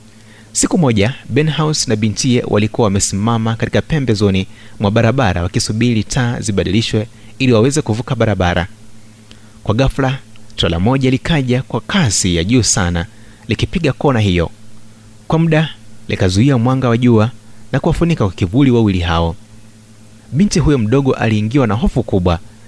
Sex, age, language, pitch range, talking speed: male, 30-49, Swahili, 100-120 Hz, 140 wpm